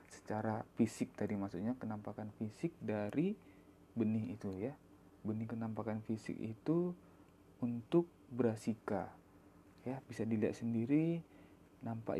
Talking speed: 105 wpm